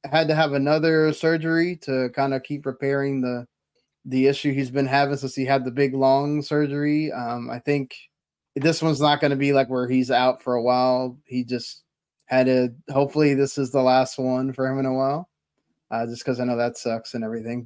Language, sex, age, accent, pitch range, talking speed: English, male, 20-39, American, 130-150 Hz, 215 wpm